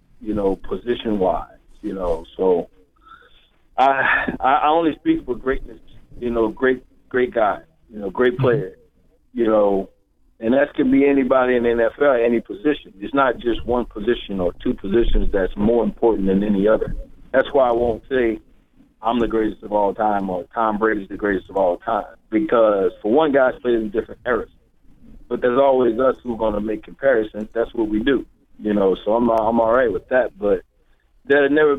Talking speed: 190 wpm